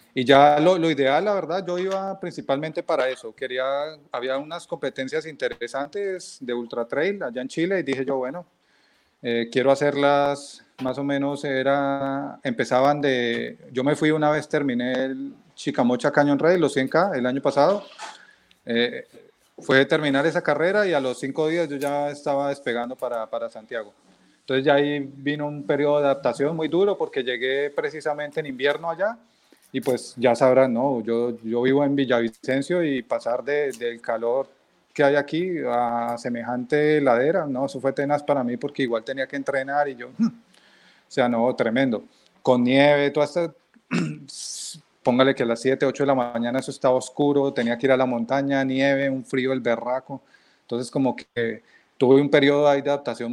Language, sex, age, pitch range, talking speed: Spanish, male, 30-49, 130-150 Hz, 180 wpm